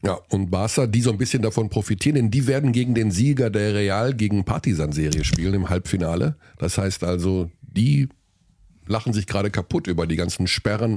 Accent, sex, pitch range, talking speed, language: German, male, 95-135 Hz, 185 wpm, German